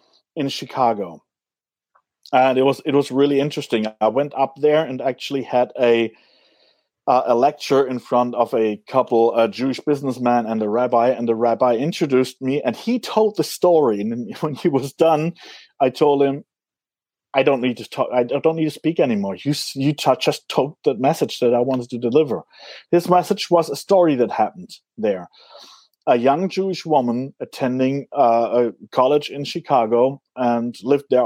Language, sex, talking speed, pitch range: English, male, 175 wpm, 120-155 Hz